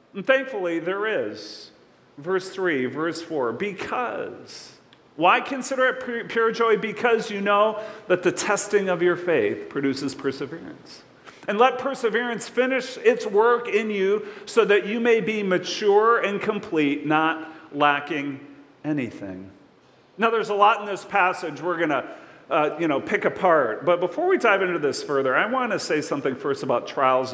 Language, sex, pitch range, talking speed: English, male, 155-230 Hz, 160 wpm